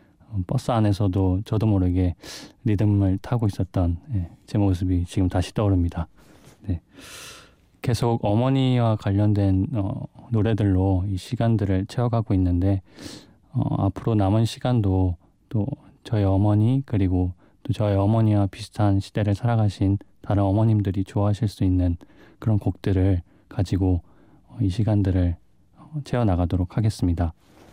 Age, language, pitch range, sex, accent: 20-39, Korean, 95-115 Hz, male, native